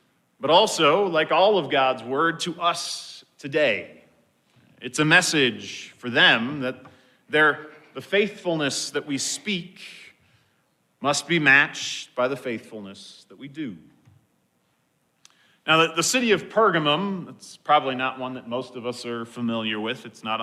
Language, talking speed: English, 140 wpm